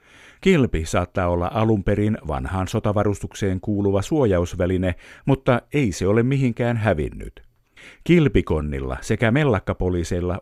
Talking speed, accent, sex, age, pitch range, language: 100 wpm, native, male, 50-69, 90-130 Hz, Finnish